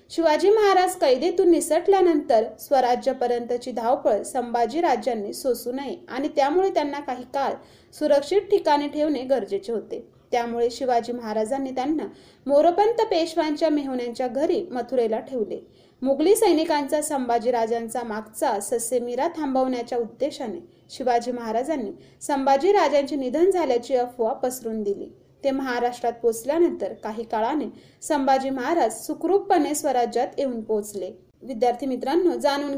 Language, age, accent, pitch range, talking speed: Marathi, 30-49, native, 240-310 Hz, 80 wpm